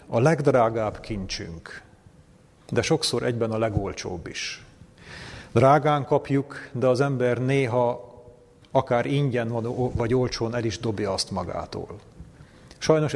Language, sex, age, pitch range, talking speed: Hungarian, male, 40-59, 115-135 Hz, 115 wpm